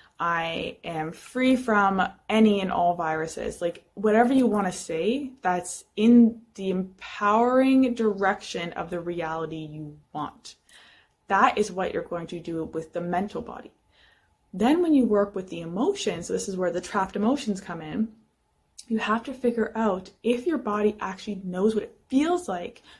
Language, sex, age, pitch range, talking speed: English, female, 20-39, 180-235 Hz, 165 wpm